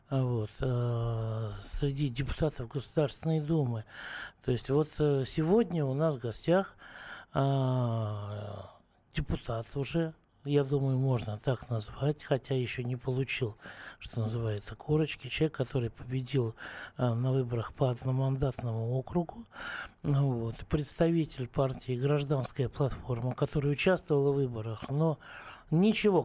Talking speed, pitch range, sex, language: 105 wpm, 115-145 Hz, male, Russian